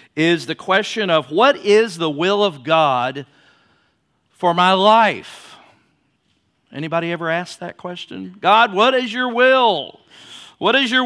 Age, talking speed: 50-69, 140 wpm